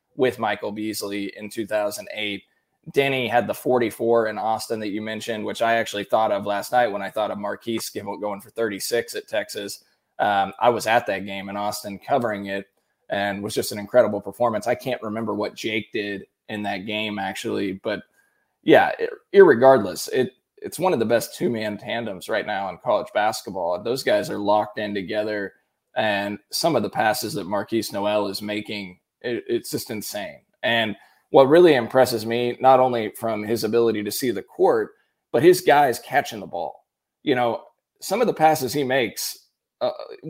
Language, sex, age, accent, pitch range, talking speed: English, male, 20-39, American, 105-125 Hz, 180 wpm